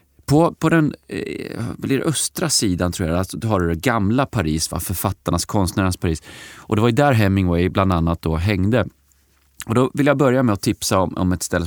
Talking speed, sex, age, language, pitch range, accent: 200 wpm, male, 30-49, Swedish, 85-115 Hz, native